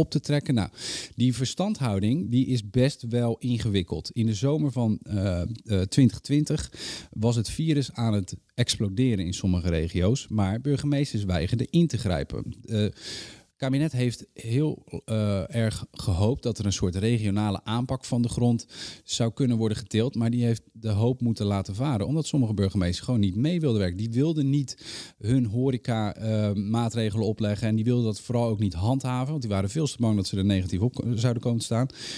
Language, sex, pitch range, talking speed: Dutch, male, 105-125 Hz, 185 wpm